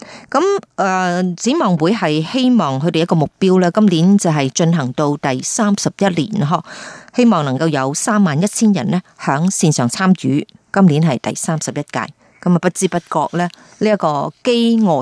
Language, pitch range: Chinese, 155-205 Hz